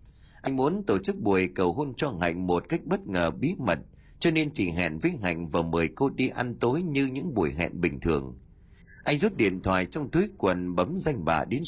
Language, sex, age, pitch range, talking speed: Vietnamese, male, 30-49, 85-140 Hz, 225 wpm